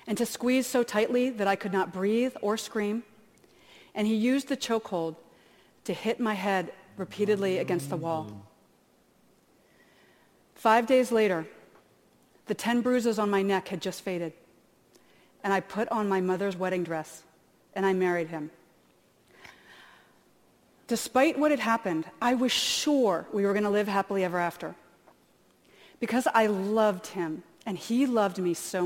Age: 40-59